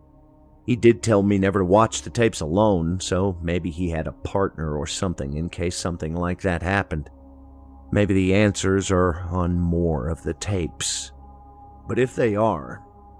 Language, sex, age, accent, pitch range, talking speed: English, male, 50-69, American, 85-105 Hz, 170 wpm